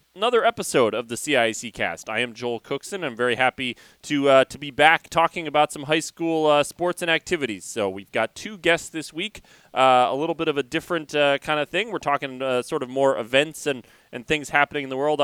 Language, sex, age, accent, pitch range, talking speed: English, male, 30-49, American, 125-160 Hz, 230 wpm